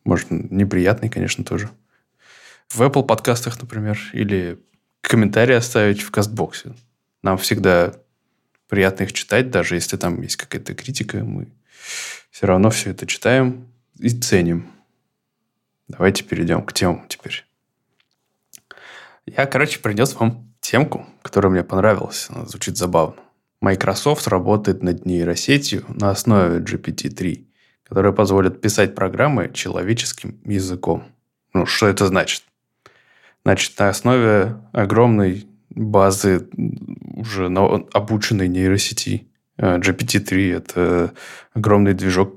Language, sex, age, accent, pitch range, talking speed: Russian, male, 20-39, native, 95-115 Hz, 110 wpm